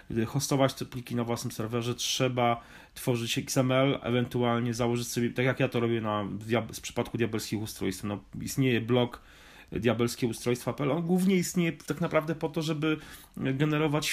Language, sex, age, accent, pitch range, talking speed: Polish, male, 30-49, native, 105-130 Hz, 150 wpm